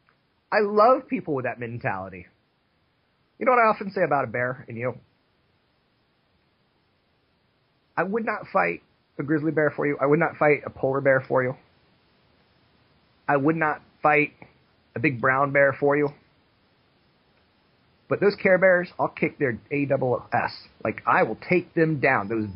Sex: male